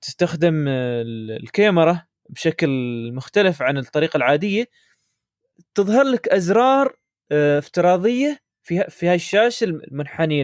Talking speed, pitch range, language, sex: 85 wpm, 145-195 Hz, Arabic, male